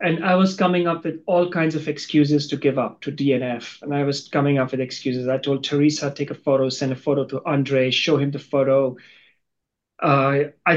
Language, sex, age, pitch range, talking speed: English, male, 30-49, 140-175 Hz, 215 wpm